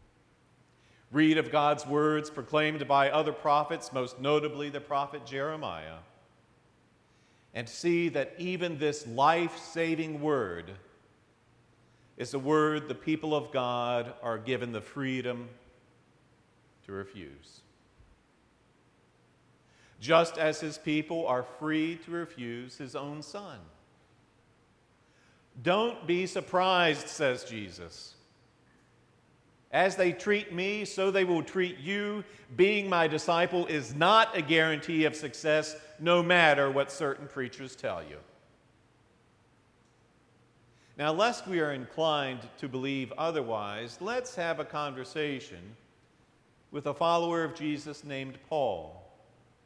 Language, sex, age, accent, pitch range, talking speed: English, male, 50-69, American, 125-160 Hz, 110 wpm